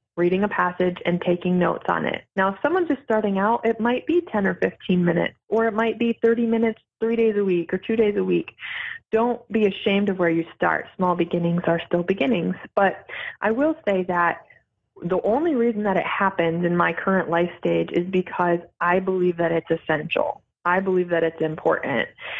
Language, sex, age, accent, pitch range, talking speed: English, female, 20-39, American, 175-225 Hz, 205 wpm